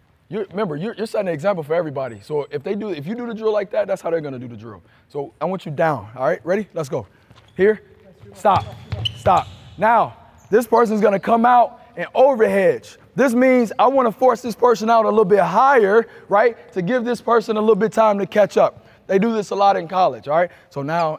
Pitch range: 145-230 Hz